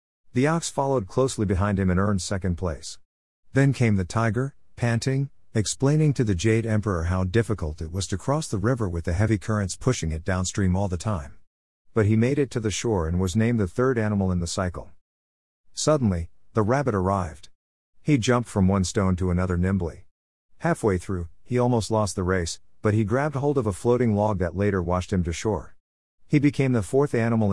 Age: 50-69